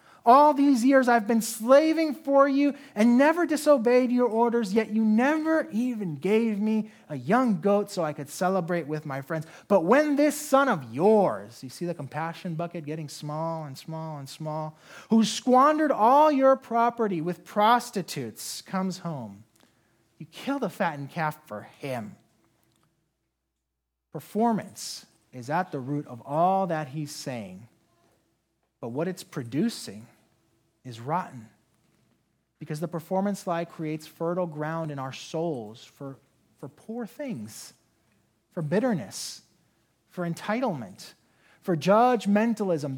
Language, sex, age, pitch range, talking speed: English, male, 30-49, 145-225 Hz, 135 wpm